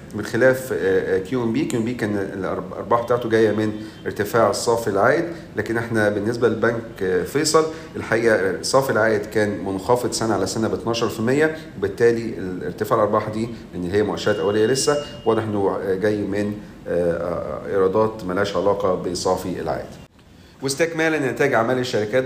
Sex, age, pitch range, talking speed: male, 40-59, 105-130 Hz, 130 wpm